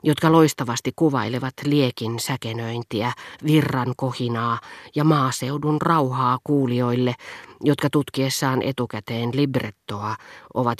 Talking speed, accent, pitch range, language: 90 wpm, native, 120-150 Hz, Finnish